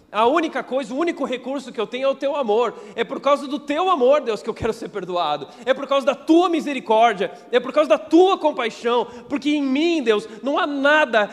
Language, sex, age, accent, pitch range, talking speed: Portuguese, male, 40-59, Brazilian, 245-305 Hz, 235 wpm